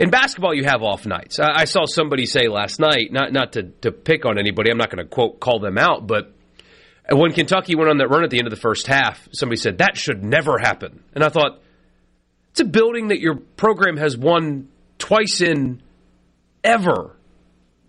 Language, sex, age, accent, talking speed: English, male, 30-49, American, 205 wpm